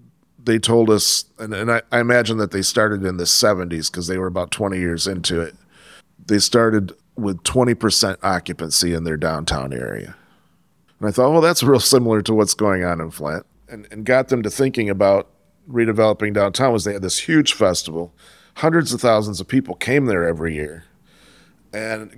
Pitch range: 90-115 Hz